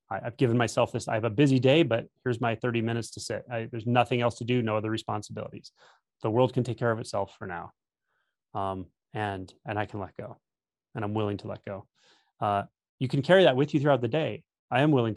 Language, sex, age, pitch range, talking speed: English, male, 30-49, 105-130 Hz, 235 wpm